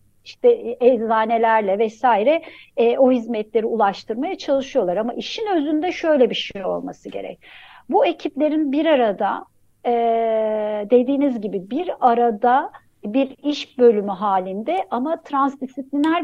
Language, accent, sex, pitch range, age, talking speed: Turkish, native, female, 225-315 Hz, 60-79, 115 wpm